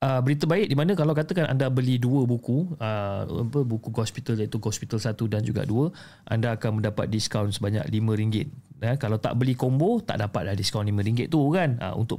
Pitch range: 105-135 Hz